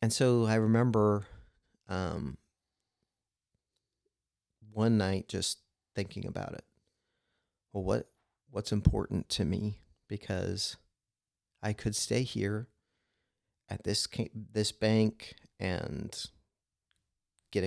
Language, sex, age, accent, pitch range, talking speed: English, male, 30-49, American, 95-110 Hz, 95 wpm